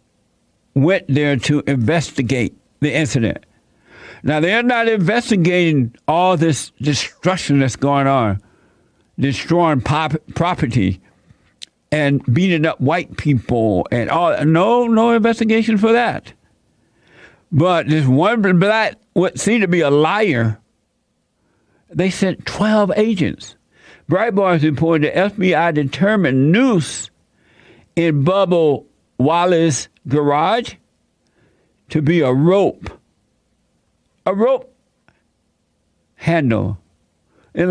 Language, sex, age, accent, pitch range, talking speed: English, male, 60-79, American, 130-185 Hz, 100 wpm